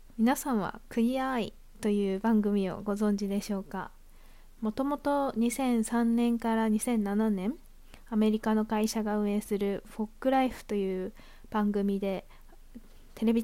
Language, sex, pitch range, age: Japanese, female, 200-230 Hz, 20-39